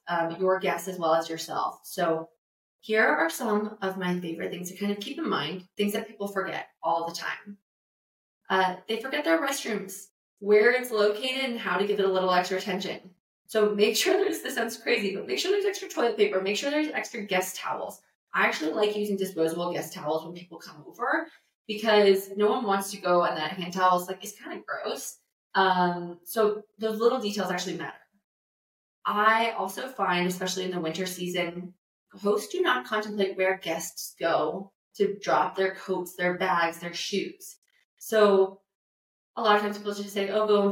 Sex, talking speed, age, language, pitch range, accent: female, 195 wpm, 20-39, English, 180-220 Hz, American